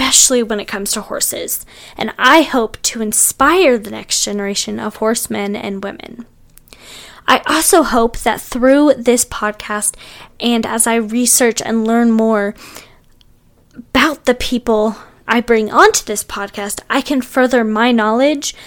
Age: 20-39